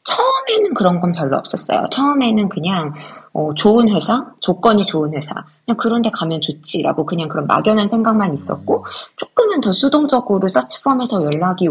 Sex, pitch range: female, 170-235 Hz